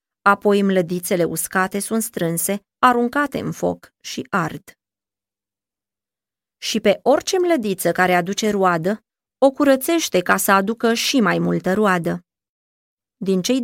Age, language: 20-39, Romanian